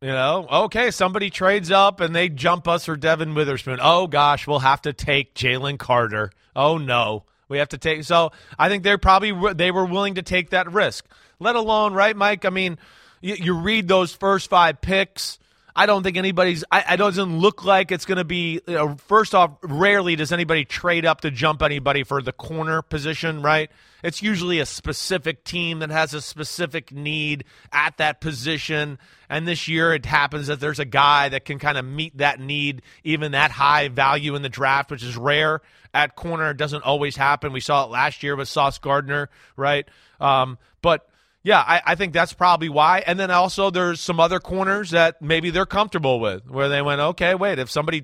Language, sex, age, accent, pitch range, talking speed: English, male, 30-49, American, 140-175 Hz, 200 wpm